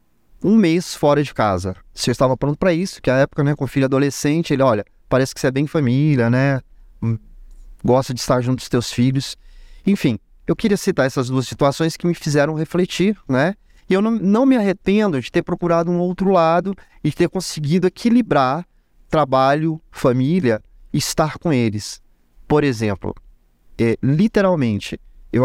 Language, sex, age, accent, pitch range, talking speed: Portuguese, male, 20-39, Brazilian, 125-185 Hz, 170 wpm